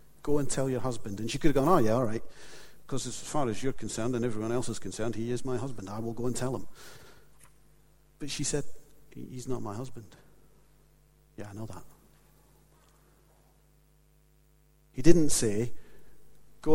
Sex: male